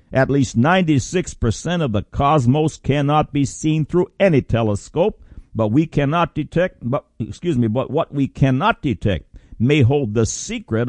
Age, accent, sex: 60-79, American, male